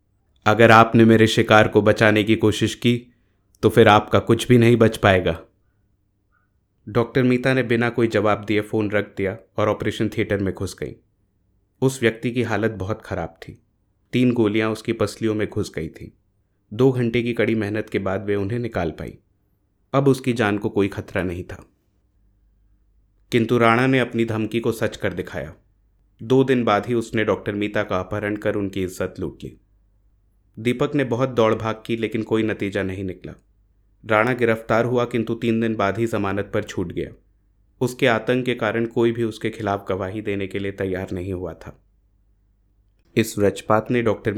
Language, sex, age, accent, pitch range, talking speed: Hindi, male, 30-49, native, 100-115 Hz, 180 wpm